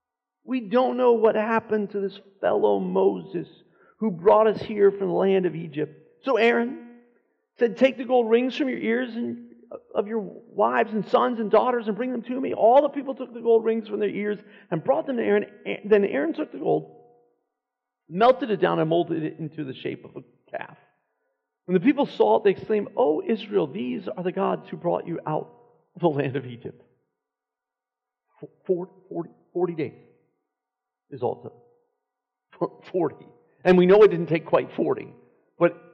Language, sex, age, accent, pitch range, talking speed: English, male, 50-69, American, 175-245 Hz, 185 wpm